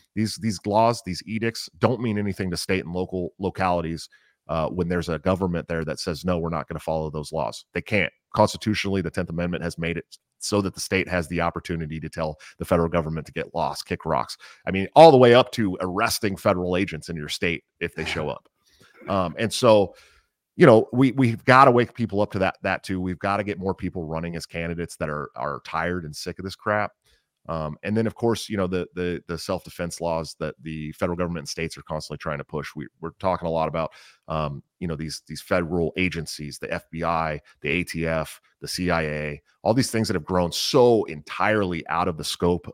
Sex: male